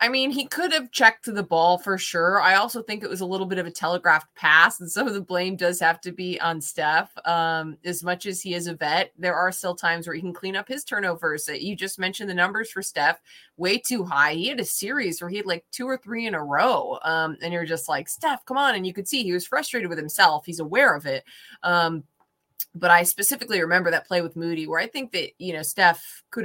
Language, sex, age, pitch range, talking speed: English, female, 20-39, 165-200 Hz, 265 wpm